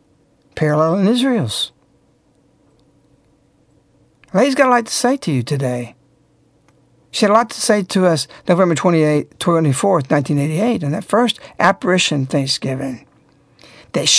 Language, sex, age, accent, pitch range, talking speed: English, male, 60-79, American, 145-205 Hz, 125 wpm